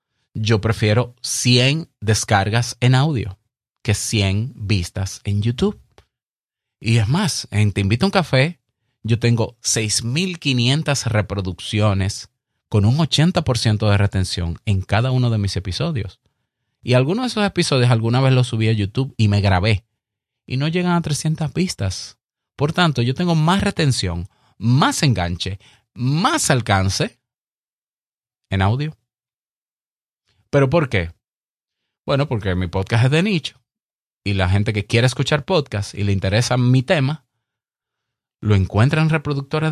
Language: Spanish